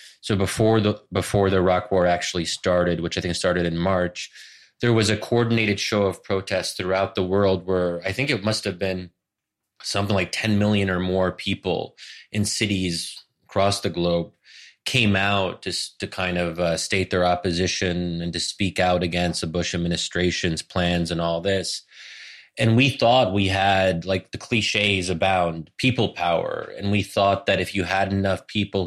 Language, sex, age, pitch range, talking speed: English, male, 20-39, 90-105 Hz, 180 wpm